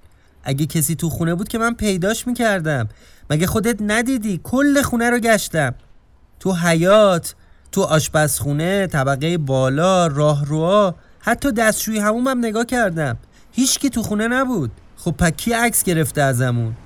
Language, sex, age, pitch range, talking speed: Persian, male, 30-49, 140-210 Hz, 140 wpm